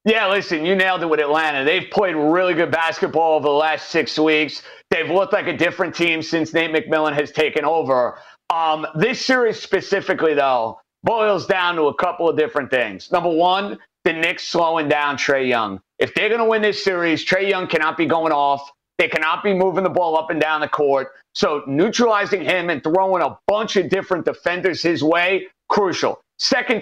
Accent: American